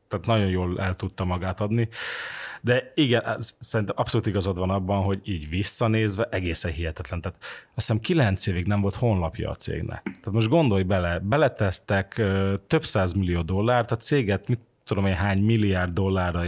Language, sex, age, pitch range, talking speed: Hungarian, male, 30-49, 95-115 Hz, 165 wpm